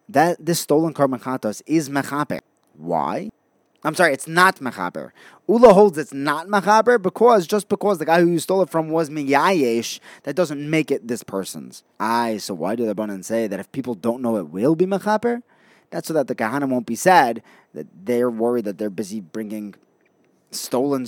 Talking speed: 190 wpm